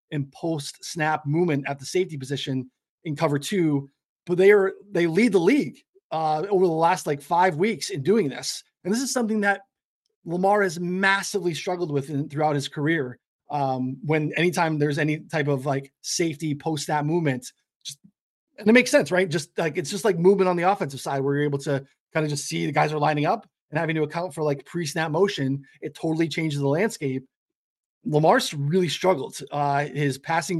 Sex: male